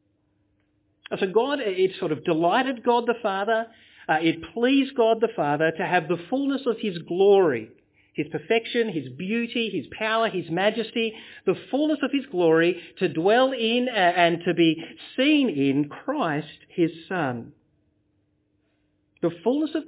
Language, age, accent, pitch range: English, 50-69, Australian, 150-220 Hz